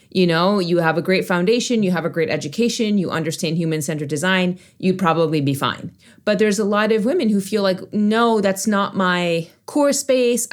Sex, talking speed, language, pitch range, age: female, 200 wpm, English, 180-220 Hz, 30-49